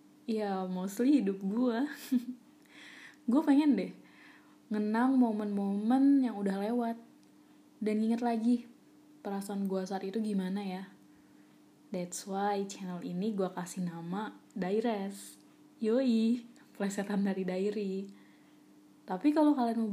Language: English